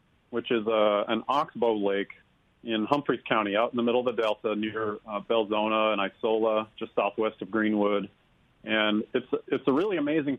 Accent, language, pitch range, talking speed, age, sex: American, English, 105-125 Hz, 180 wpm, 40-59, male